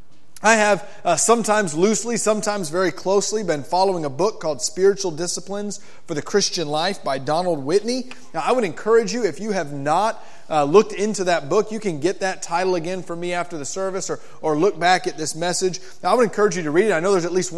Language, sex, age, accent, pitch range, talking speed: English, male, 30-49, American, 165-205 Hz, 225 wpm